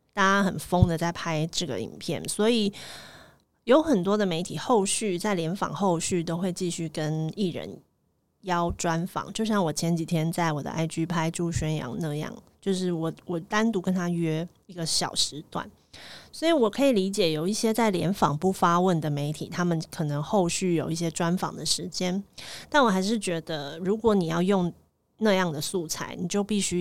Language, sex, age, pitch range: Chinese, female, 30-49, 165-210 Hz